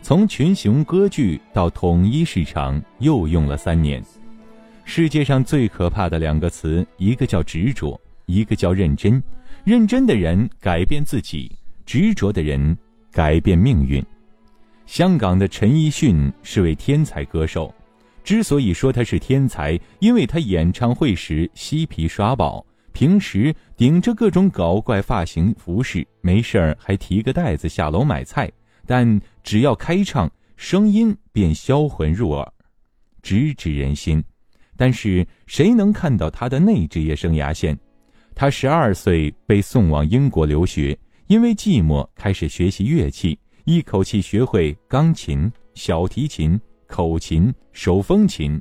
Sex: male